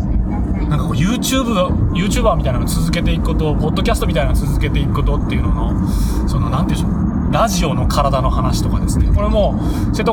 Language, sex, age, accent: Japanese, male, 20-39, native